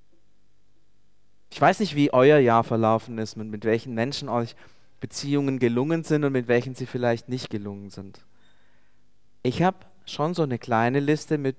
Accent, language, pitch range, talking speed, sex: German, German, 110-140 Hz, 165 wpm, male